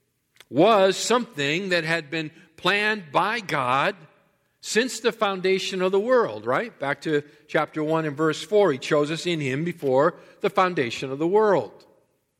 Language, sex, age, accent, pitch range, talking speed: English, male, 50-69, American, 140-190 Hz, 160 wpm